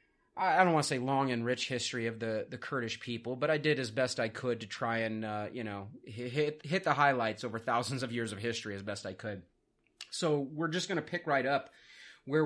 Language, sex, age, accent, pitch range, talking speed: English, male, 30-49, American, 125-150 Hz, 240 wpm